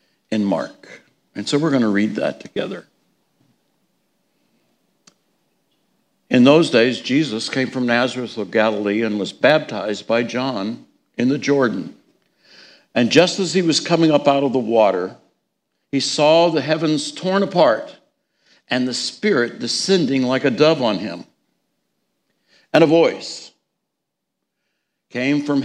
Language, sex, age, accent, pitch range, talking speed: English, male, 60-79, American, 125-175 Hz, 135 wpm